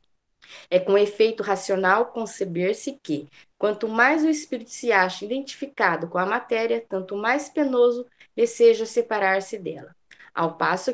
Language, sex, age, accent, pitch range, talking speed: Portuguese, female, 20-39, Brazilian, 190-235 Hz, 130 wpm